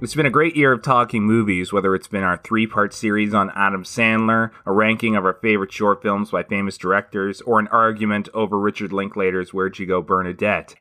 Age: 30-49